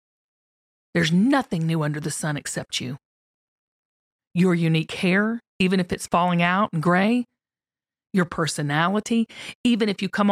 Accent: American